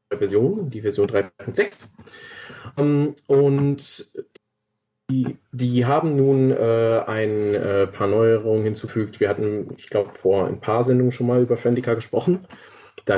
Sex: male